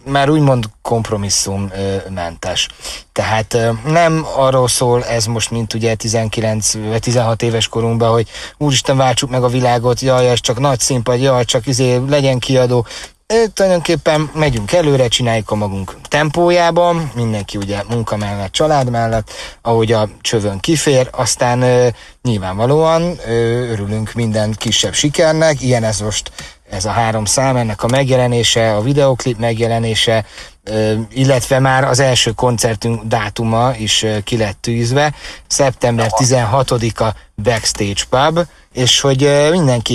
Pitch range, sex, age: 105-130 Hz, male, 30-49